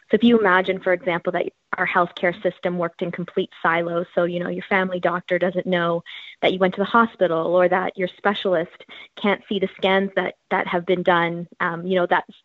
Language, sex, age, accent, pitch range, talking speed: English, female, 20-39, American, 175-195 Hz, 215 wpm